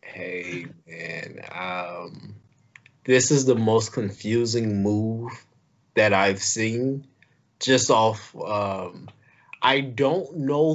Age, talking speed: 20-39, 100 wpm